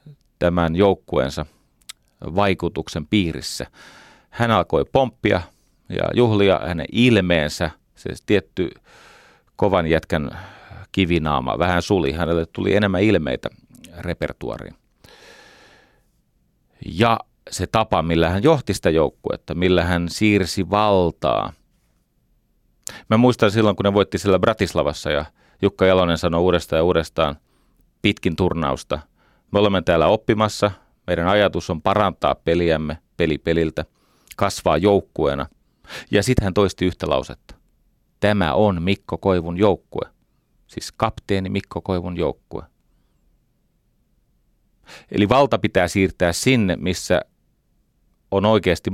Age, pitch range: 40-59, 85-105 Hz